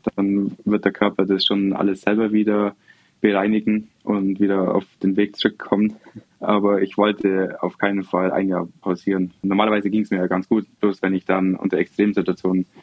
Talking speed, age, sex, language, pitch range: 180 wpm, 20-39, male, German, 95-105 Hz